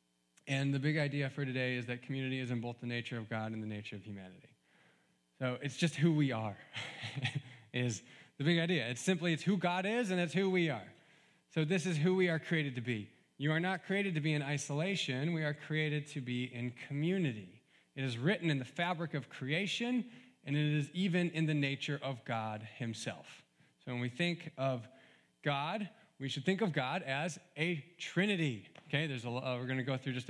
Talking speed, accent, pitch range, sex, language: 215 wpm, American, 130-175 Hz, male, English